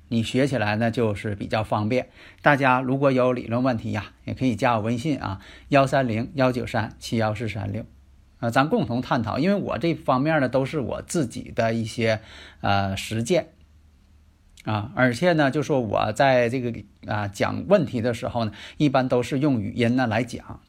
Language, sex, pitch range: Chinese, male, 110-150 Hz